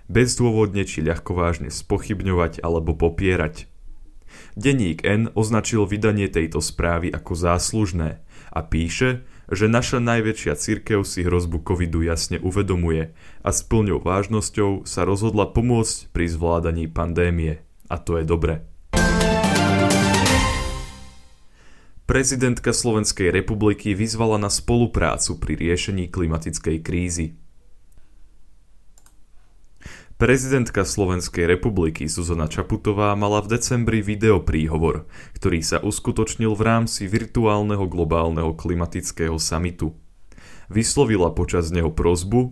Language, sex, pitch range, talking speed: Slovak, male, 80-110 Hz, 100 wpm